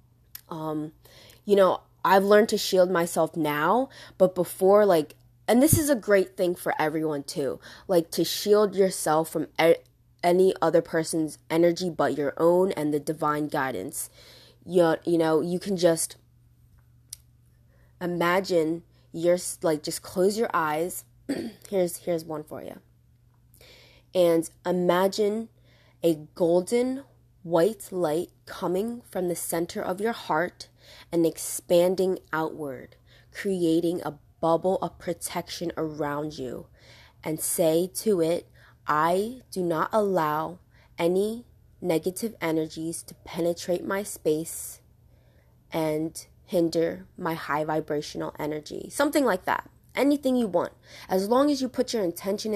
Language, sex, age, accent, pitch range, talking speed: English, female, 20-39, American, 155-185 Hz, 130 wpm